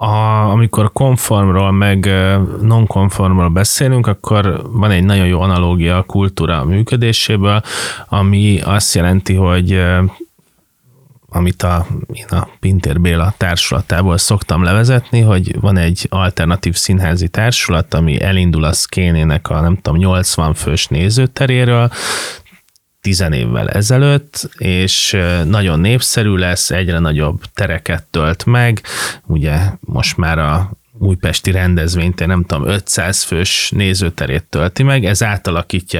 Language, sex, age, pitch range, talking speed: Hungarian, male, 30-49, 90-105 Hz, 120 wpm